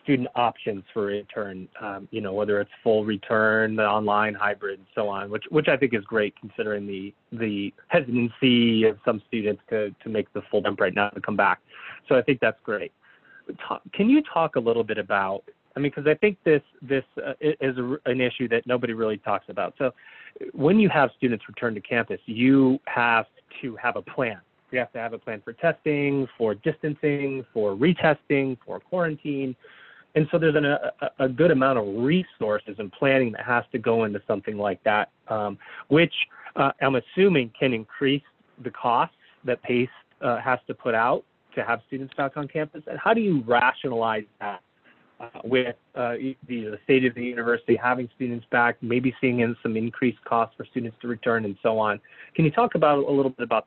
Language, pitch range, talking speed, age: English, 110-140 Hz, 200 wpm, 30-49